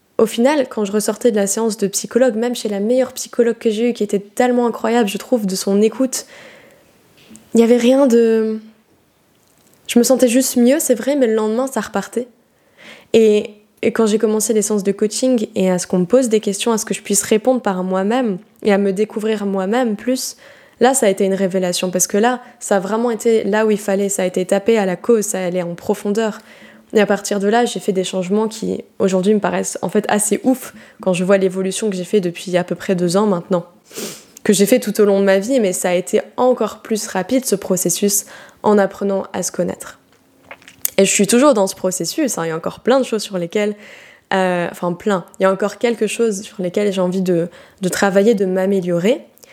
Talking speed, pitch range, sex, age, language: 235 wpm, 195-235 Hz, female, 10-29, French